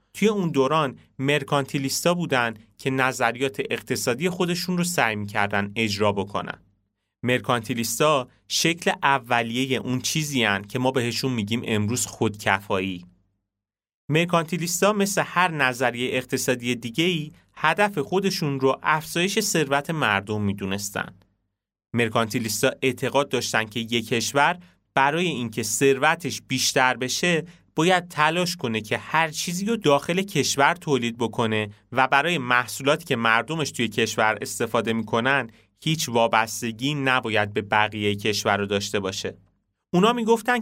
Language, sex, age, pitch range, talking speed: Persian, male, 30-49, 110-150 Hz, 120 wpm